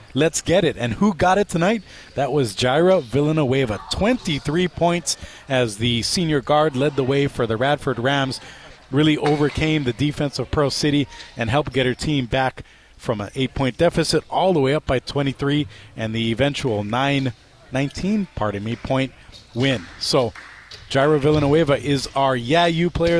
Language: English